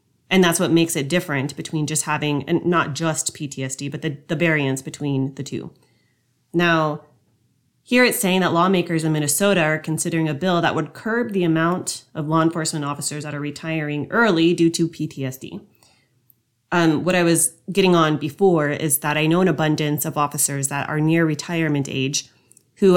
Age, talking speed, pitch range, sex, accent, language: 30-49, 180 wpm, 145-175 Hz, female, American, English